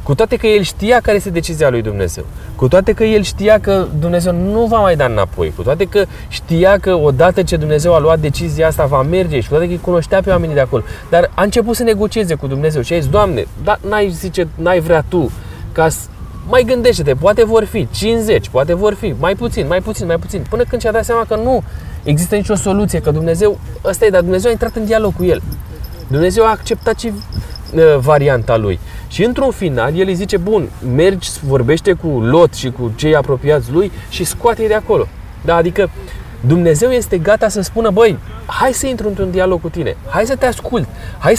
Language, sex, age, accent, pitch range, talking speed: Romanian, male, 20-39, native, 130-210 Hz, 215 wpm